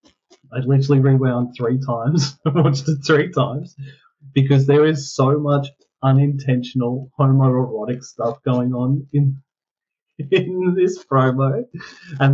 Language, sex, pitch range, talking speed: English, male, 130-150 Hz, 115 wpm